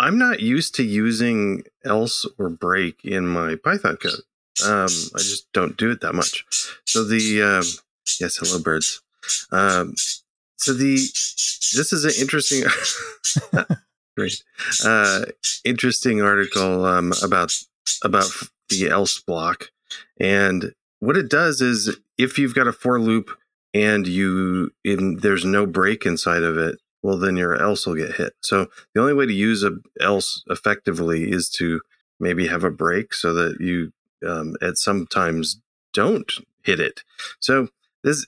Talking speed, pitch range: 150 wpm, 90-125 Hz